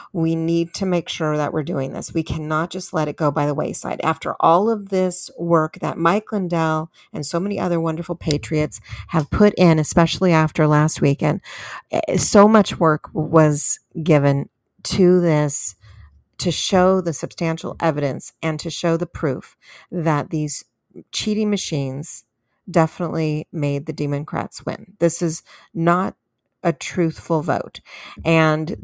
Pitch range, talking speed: 150-170 Hz, 150 wpm